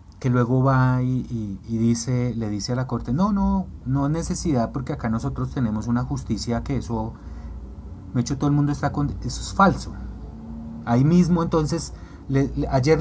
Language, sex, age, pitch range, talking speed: Spanish, male, 30-49, 80-135 Hz, 190 wpm